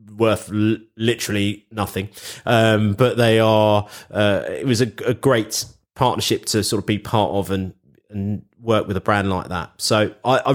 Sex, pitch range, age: male, 100-115 Hz, 30-49